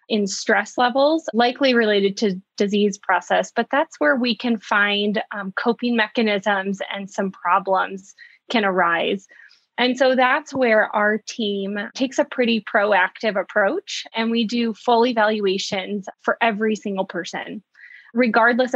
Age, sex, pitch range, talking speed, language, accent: 20-39, female, 200-240 Hz, 140 wpm, English, American